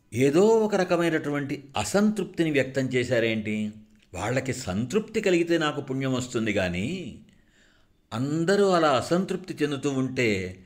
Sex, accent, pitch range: male, native, 95-130 Hz